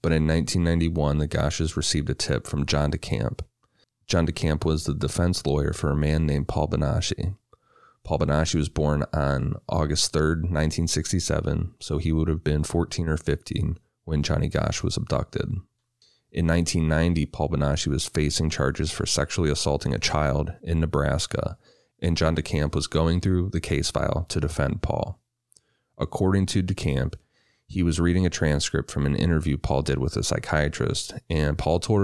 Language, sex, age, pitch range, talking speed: English, male, 30-49, 75-90 Hz, 165 wpm